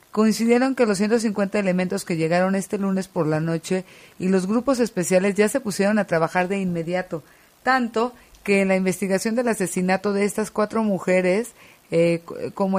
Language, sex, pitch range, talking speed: Spanish, female, 175-210 Hz, 170 wpm